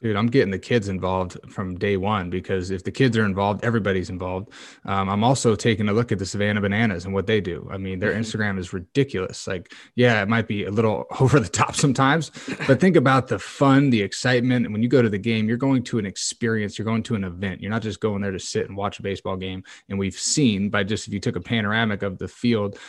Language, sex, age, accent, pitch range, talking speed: English, male, 20-39, American, 100-115 Hz, 255 wpm